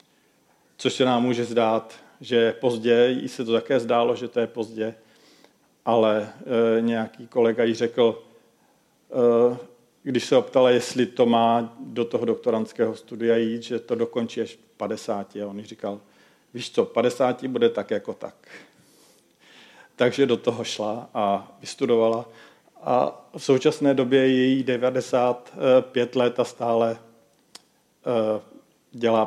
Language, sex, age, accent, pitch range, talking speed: Czech, male, 50-69, native, 115-130 Hz, 140 wpm